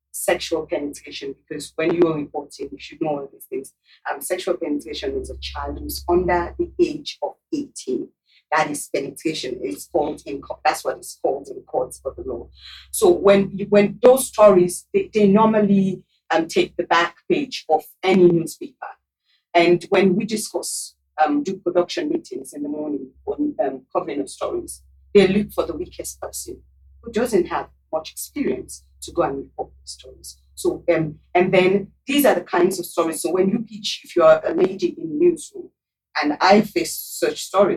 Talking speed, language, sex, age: 185 wpm, English, female, 40-59